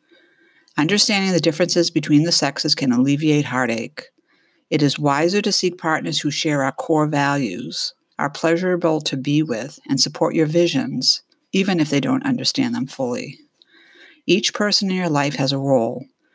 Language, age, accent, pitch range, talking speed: English, 50-69, American, 140-185 Hz, 160 wpm